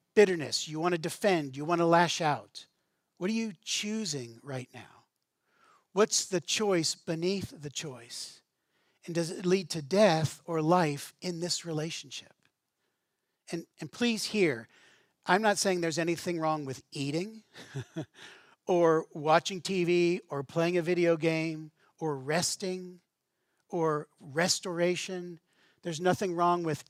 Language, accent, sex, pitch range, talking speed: English, American, male, 150-185 Hz, 135 wpm